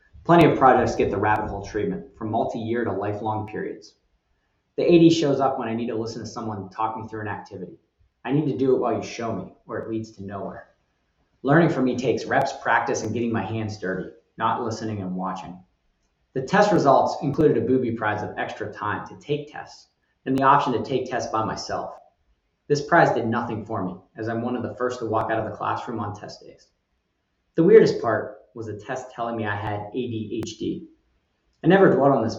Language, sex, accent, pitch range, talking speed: English, male, American, 105-130 Hz, 215 wpm